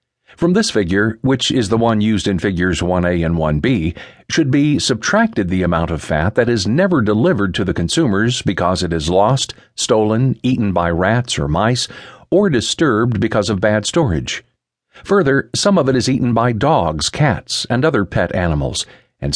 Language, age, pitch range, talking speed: English, 50-69, 90-135 Hz, 175 wpm